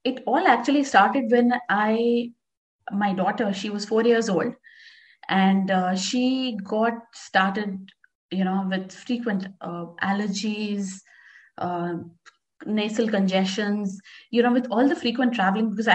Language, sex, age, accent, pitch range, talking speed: English, female, 20-39, Indian, 195-250 Hz, 130 wpm